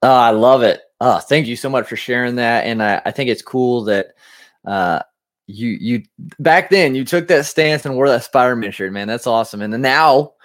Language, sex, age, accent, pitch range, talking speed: English, male, 20-39, American, 110-140 Hz, 225 wpm